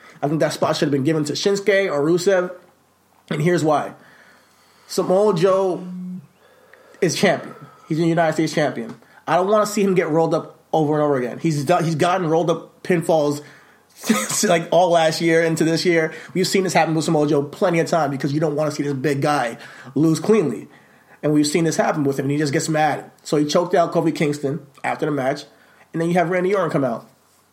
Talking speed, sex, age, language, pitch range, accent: 220 wpm, male, 20-39, English, 140-170 Hz, American